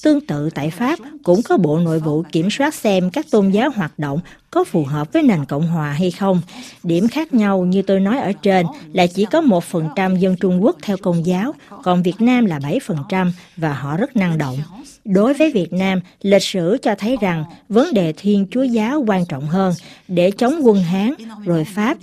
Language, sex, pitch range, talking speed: Vietnamese, female, 175-240 Hz, 215 wpm